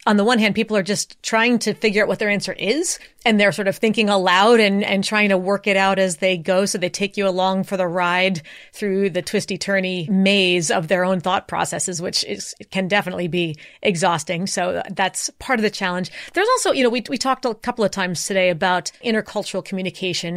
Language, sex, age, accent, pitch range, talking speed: English, female, 30-49, American, 185-210 Hz, 220 wpm